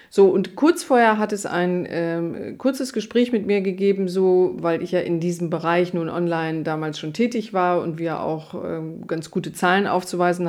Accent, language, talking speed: German, German, 195 wpm